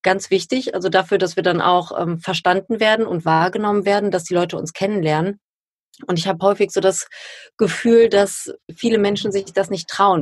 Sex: female